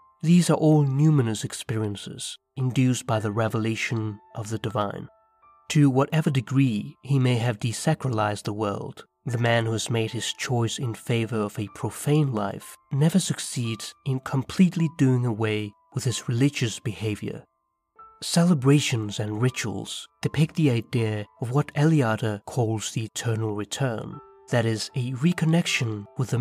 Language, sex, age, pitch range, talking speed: English, male, 30-49, 110-140 Hz, 145 wpm